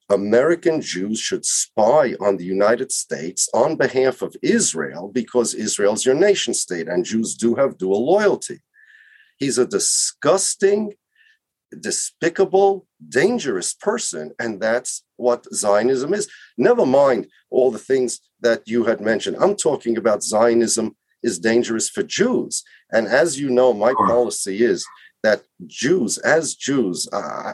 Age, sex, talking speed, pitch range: 40-59, male, 140 wpm, 115-165 Hz